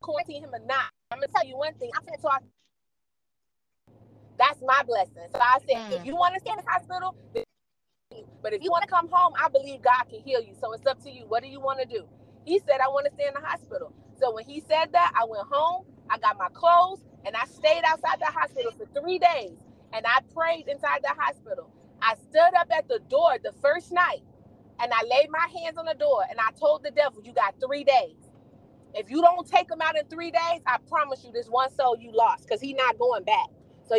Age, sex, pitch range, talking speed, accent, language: 30-49, female, 255-345 Hz, 240 wpm, American, English